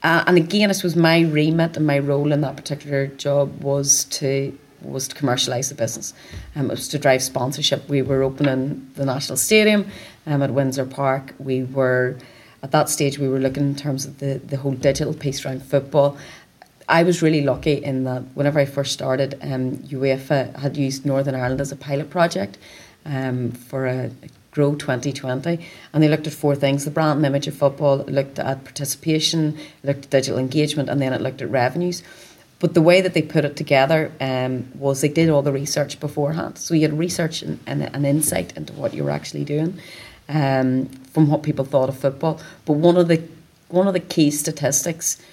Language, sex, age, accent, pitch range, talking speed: English, female, 30-49, Irish, 135-155 Hz, 205 wpm